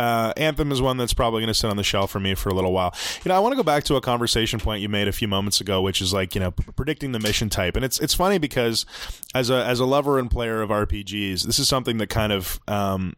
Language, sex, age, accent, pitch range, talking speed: English, male, 20-39, American, 100-125 Hz, 300 wpm